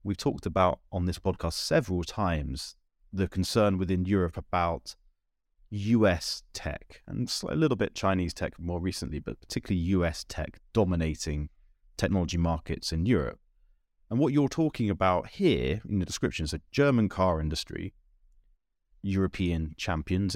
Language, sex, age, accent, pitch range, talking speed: English, male, 30-49, British, 80-95 Hz, 140 wpm